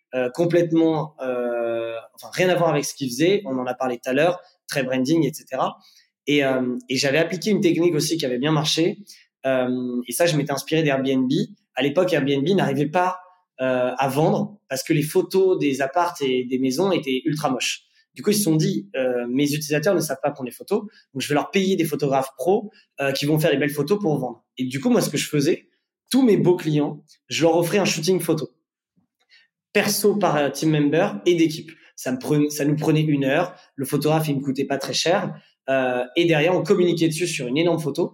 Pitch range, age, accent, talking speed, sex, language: 140-175 Hz, 20-39, French, 225 wpm, male, French